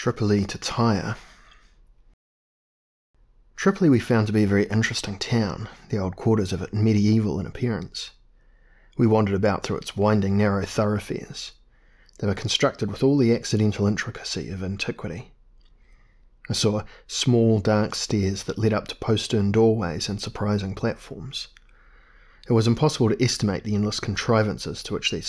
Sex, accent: male, Australian